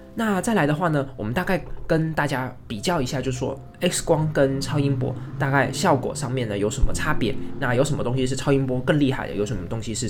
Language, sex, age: Chinese, male, 20-39